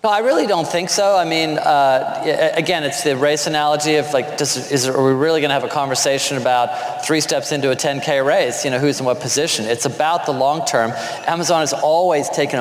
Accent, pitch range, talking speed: American, 125-150 Hz, 230 wpm